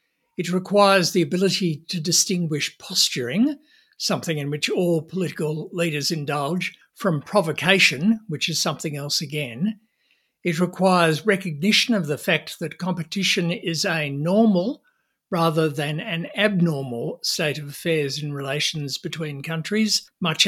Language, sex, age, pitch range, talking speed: English, male, 60-79, 150-185 Hz, 130 wpm